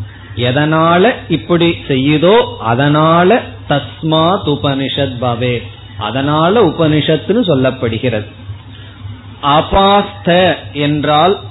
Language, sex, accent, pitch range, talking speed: Tamil, male, native, 115-155 Hz, 50 wpm